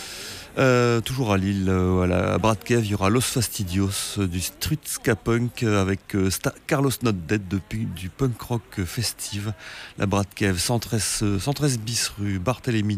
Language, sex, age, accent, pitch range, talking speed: French, male, 30-49, French, 95-115 Hz, 155 wpm